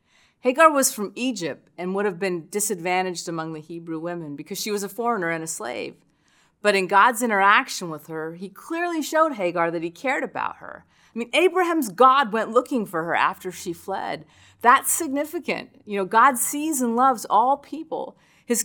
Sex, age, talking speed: female, 40-59, 185 wpm